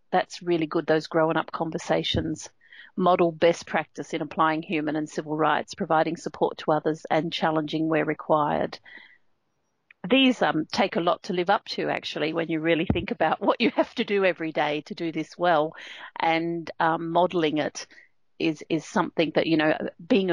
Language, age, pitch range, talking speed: English, 40-59, 160-200 Hz, 180 wpm